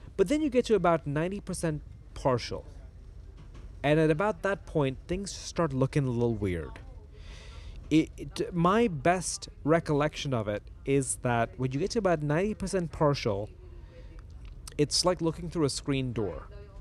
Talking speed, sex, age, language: 145 wpm, male, 30-49, English